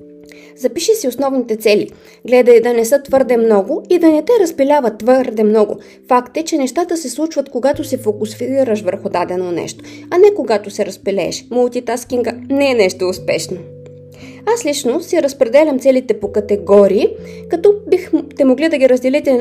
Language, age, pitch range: Bulgarian, 20-39, 215-315 Hz